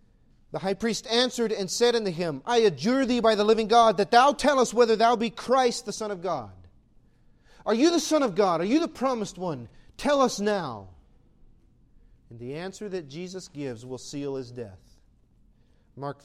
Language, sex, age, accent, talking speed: English, male, 40-59, American, 190 wpm